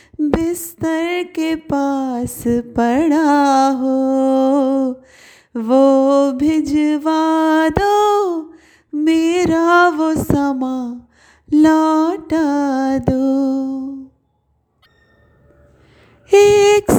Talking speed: 50 wpm